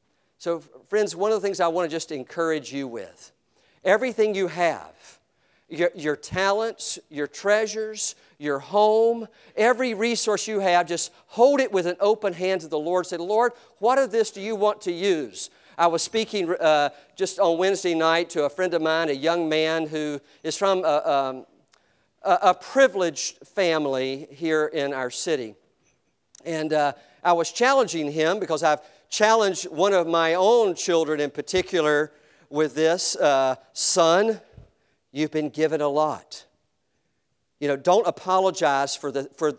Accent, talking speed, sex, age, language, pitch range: American, 160 wpm, male, 50-69, English, 150-210 Hz